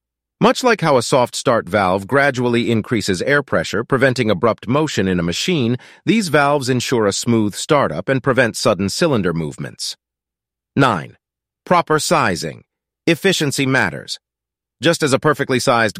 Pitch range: 105-140 Hz